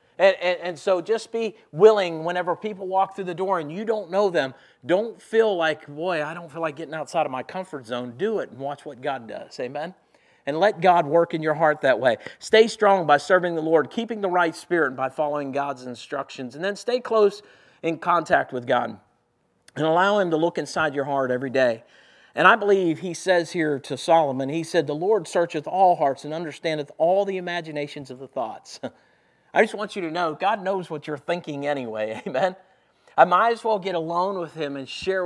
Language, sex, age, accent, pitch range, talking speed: English, male, 50-69, American, 145-190 Hz, 215 wpm